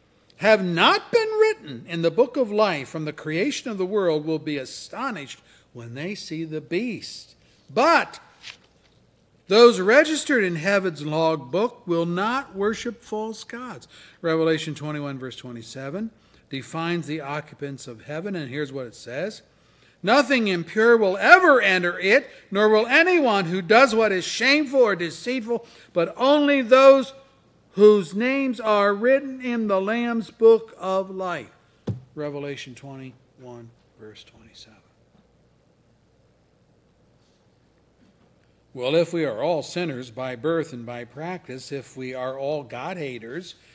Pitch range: 140-220 Hz